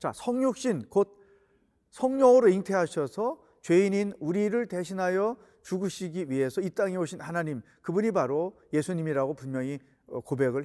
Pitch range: 155-210 Hz